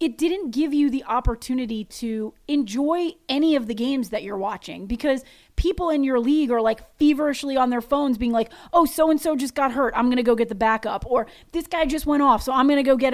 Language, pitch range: English, 235-300 Hz